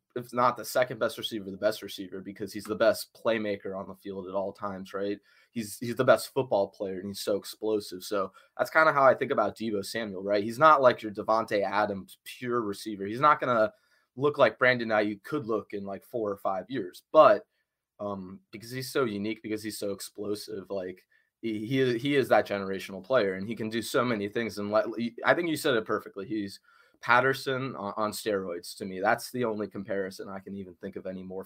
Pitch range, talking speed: 100-115 Hz, 220 wpm